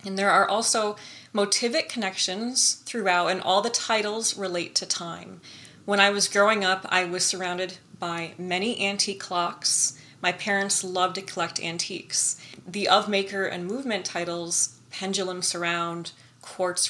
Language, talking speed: English, 145 wpm